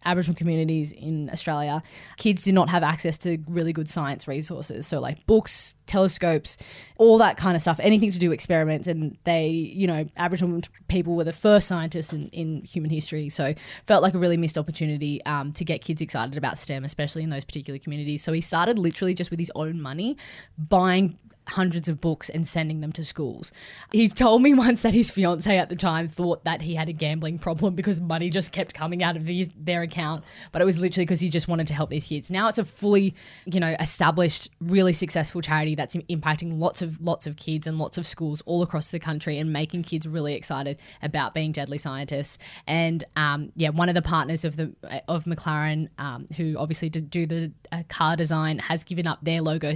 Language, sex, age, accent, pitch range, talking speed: English, female, 20-39, Australian, 155-175 Hz, 210 wpm